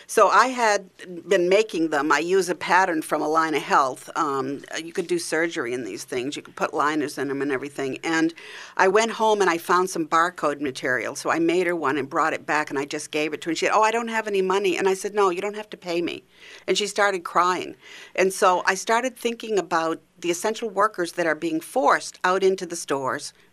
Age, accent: 50-69, American